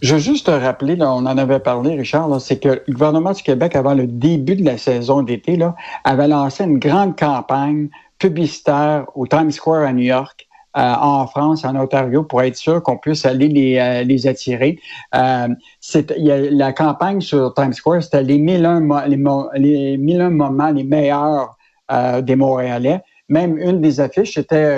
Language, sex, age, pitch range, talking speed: French, male, 60-79, 135-165 Hz, 170 wpm